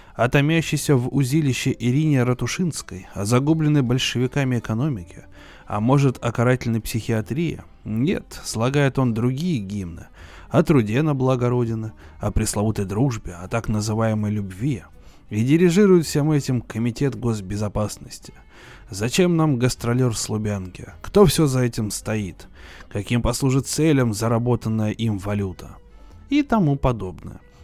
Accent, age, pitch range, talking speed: native, 20-39, 105-150 Hz, 120 wpm